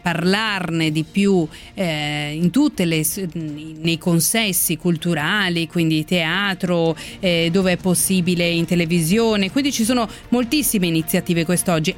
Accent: native